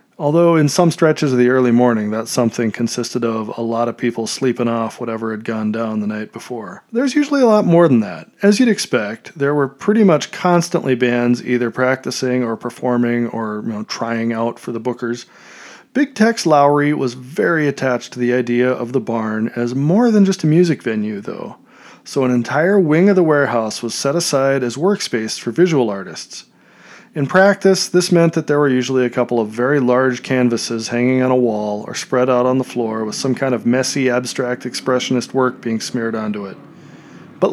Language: English